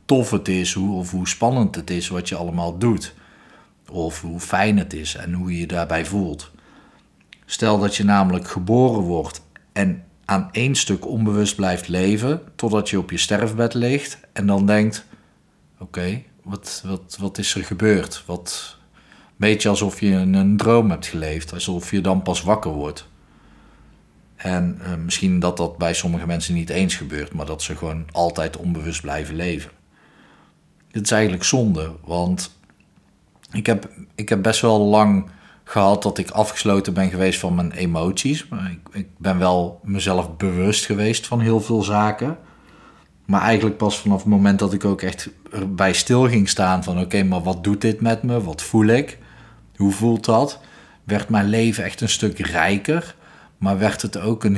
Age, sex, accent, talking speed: 40-59, male, Dutch, 175 wpm